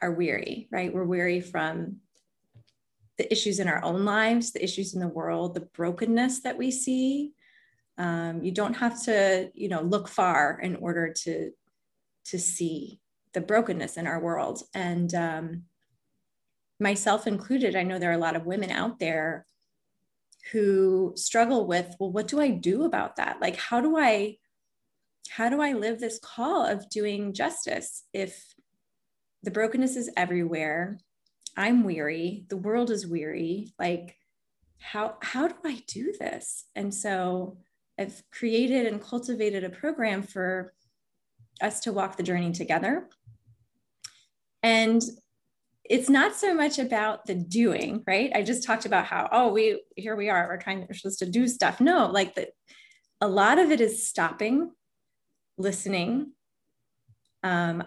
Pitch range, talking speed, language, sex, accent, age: 175-230 Hz, 150 wpm, English, female, American, 20-39